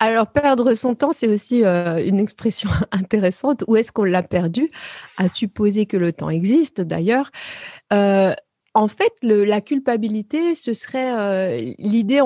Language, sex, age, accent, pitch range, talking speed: French, female, 30-49, French, 195-245 Hz, 145 wpm